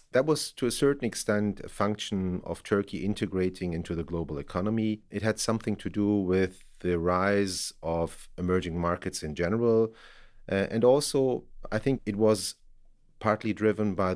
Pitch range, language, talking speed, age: 90-105 Hz, English, 160 wpm, 40-59